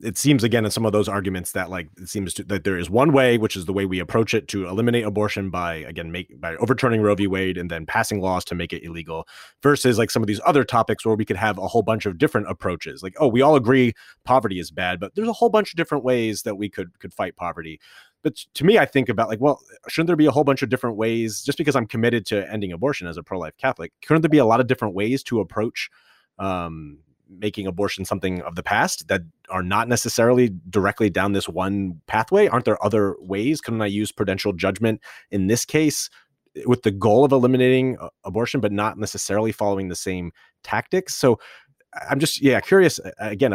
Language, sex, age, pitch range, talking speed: English, male, 30-49, 95-125 Hz, 230 wpm